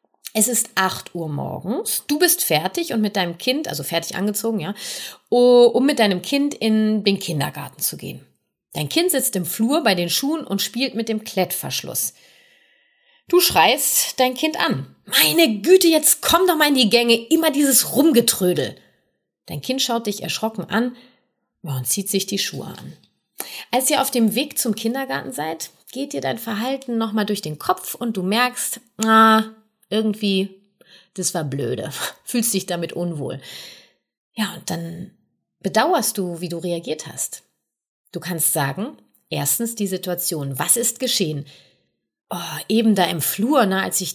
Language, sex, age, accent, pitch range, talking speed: German, female, 30-49, German, 185-250 Hz, 160 wpm